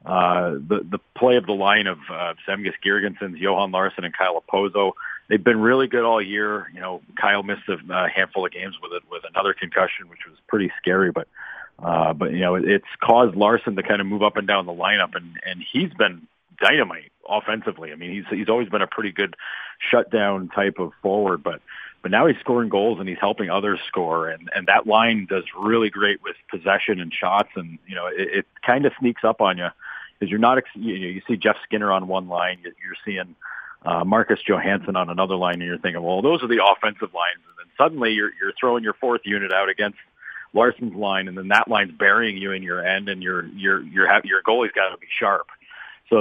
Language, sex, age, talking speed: English, male, 40-59, 220 wpm